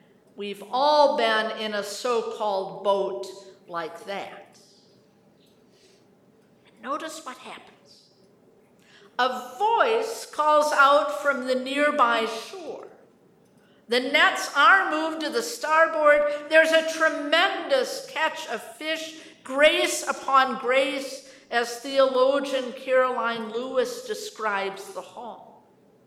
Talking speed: 100 wpm